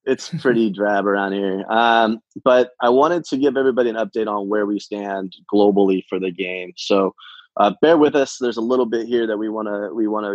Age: 20-39